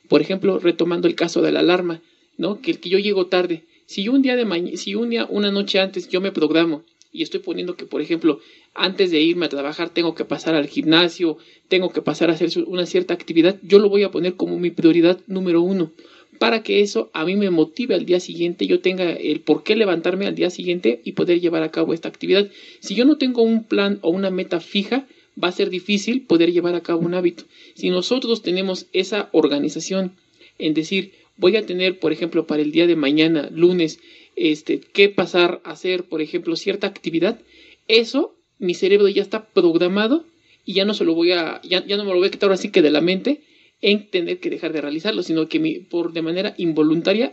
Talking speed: 220 wpm